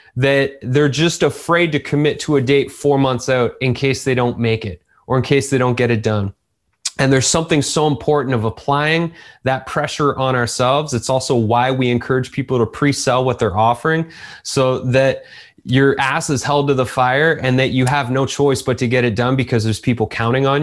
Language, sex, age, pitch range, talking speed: English, male, 20-39, 125-155 Hz, 210 wpm